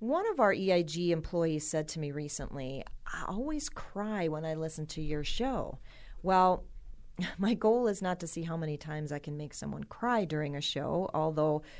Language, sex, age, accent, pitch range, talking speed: English, female, 40-59, American, 145-190 Hz, 190 wpm